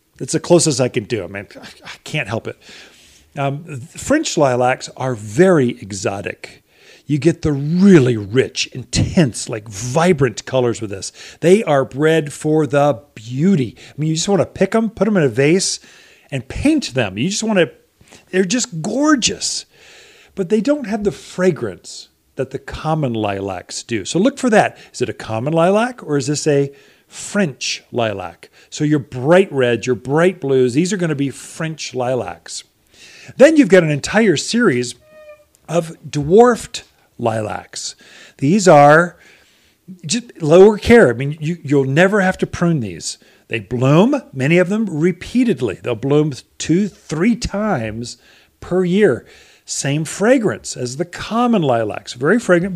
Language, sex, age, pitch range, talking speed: English, male, 40-59, 135-195 Hz, 160 wpm